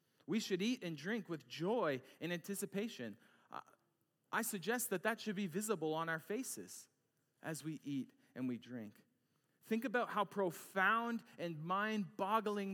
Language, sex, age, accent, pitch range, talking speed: English, male, 40-59, American, 135-195 Hz, 150 wpm